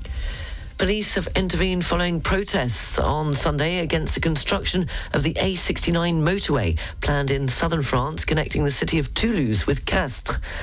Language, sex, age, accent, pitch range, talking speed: English, female, 40-59, British, 115-155 Hz, 140 wpm